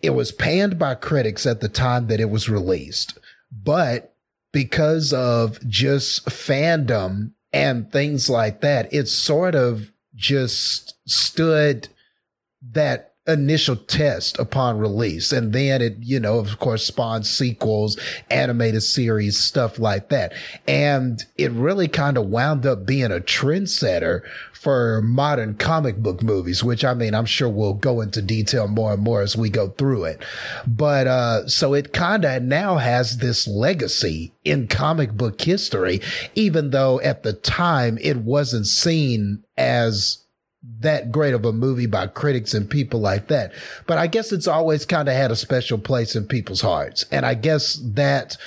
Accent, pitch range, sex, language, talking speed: American, 110-145 Hz, male, English, 160 wpm